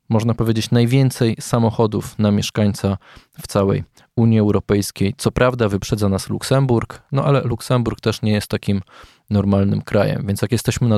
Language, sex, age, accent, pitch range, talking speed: Polish, male, 20-39, native, 100-125 Hz, 155 wpm